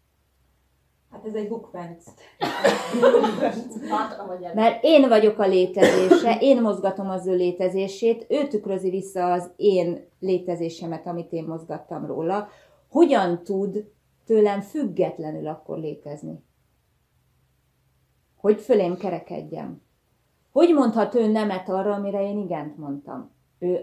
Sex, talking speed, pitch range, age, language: female, 110 wpm, 165-215 Hz, 30-49, Hungarian